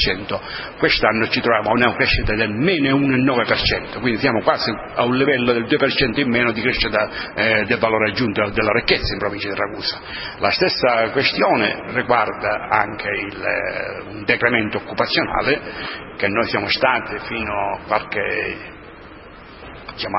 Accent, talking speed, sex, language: native, 145 wpm, male, Italian